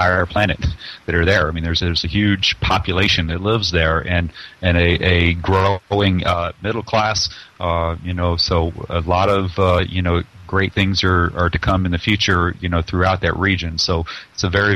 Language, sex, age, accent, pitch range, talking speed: English, male, 40-59, American, 90-105 Hz, 205 wpm